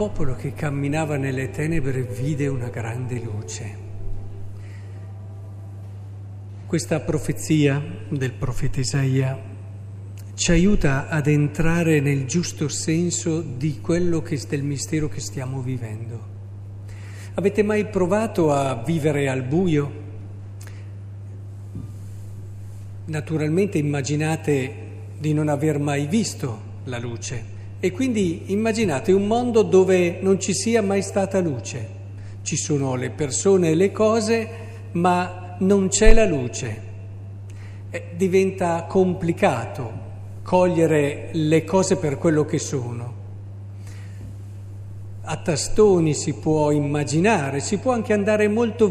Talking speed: 110 wpm